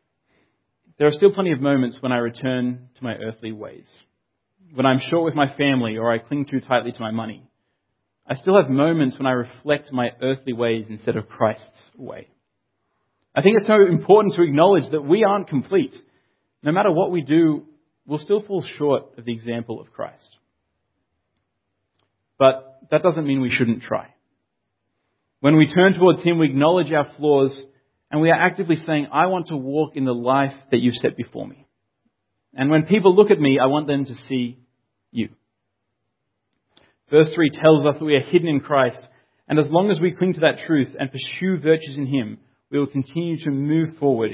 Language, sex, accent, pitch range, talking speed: English, male, Australian, 120-155 Hz, 190 wpm